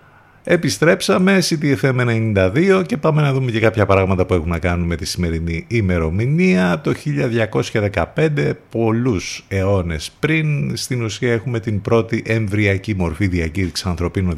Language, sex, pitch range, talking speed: Greek, male, 90-130 Hz, 130 wpm